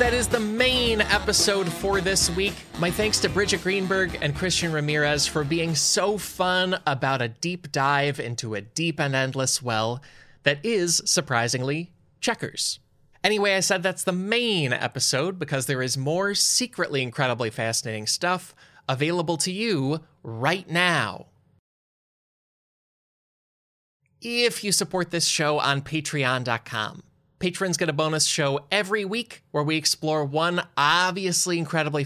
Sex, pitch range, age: male, 140-185 Hz, 20-39